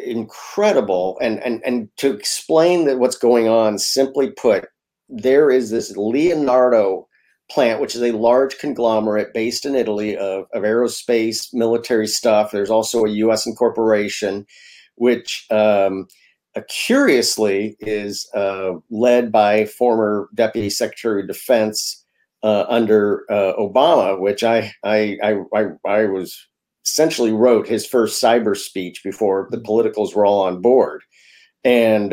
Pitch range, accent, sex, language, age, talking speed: 105-125 Hz, American, male, English, 50-69, 135 wpm